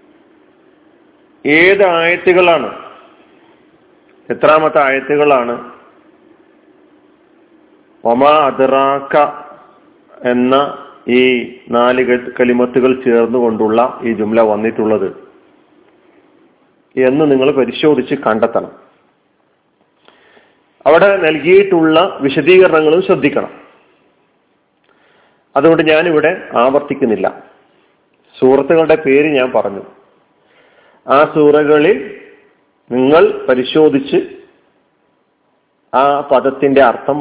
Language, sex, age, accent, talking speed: Malayalam, male, 40-59, native, 55 wpm